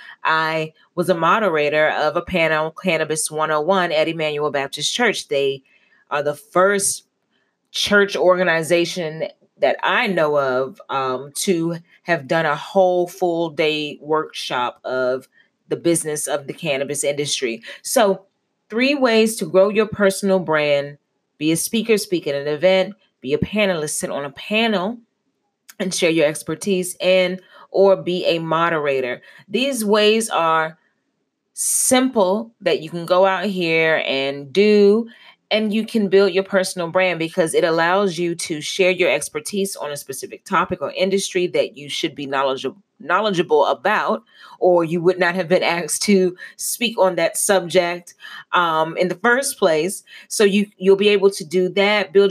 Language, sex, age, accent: English, female, 30-49, American